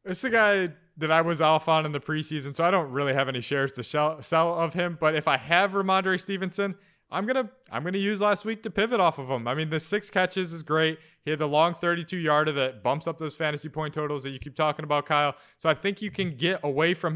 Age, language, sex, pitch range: 20-39, English, male, 140-175 Hz